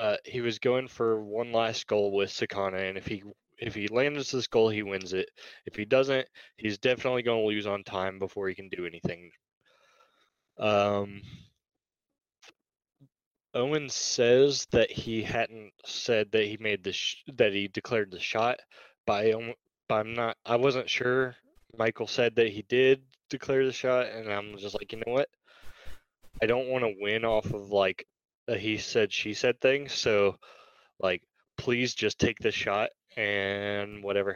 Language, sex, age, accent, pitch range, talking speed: English, male, 20-39, American, 100-120 Hz, 170 wpm